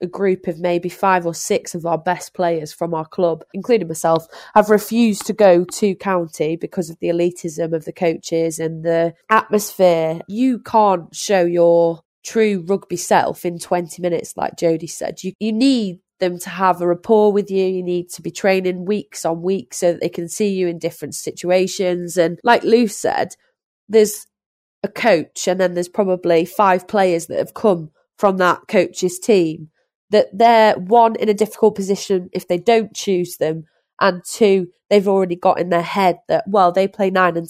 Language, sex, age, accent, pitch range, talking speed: English, female, 20-39, British, 170-205 Hz, 190 wpm